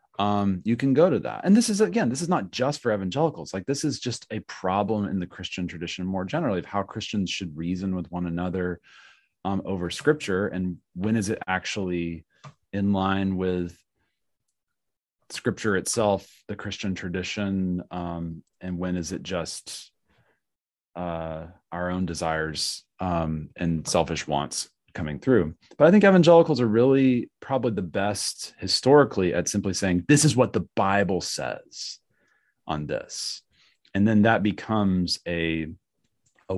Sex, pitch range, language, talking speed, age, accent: male, 85-105 Hz, English, 155 wpm, 30-49, American